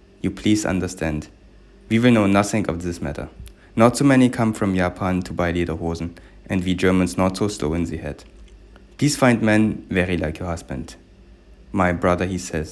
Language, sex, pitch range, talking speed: English, male, 85-105 Hz, 185 wpm